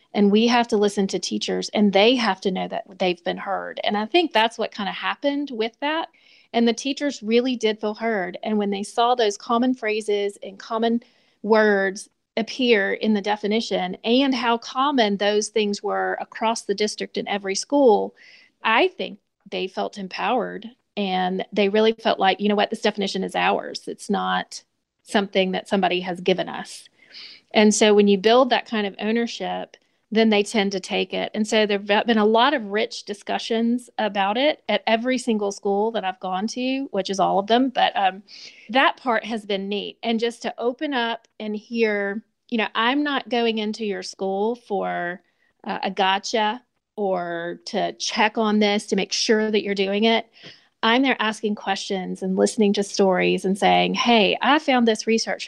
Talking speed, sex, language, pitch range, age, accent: 190 wpm, female, English, 195-230 Hz, 40-59, American